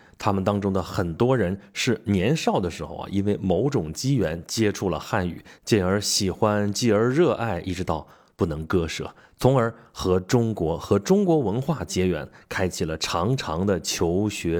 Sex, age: male, 20-39